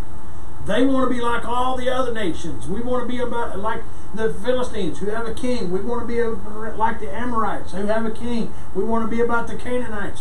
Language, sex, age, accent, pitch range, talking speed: English, male, 50-69, American, 145-220 Hz, 230 wpm